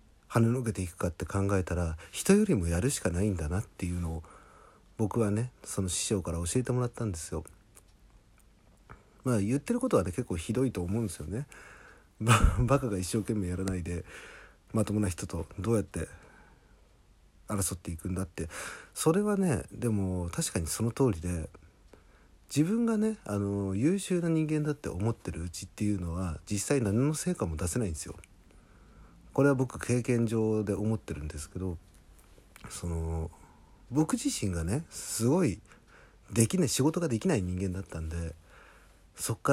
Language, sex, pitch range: Japanese, male, 90-125 Hz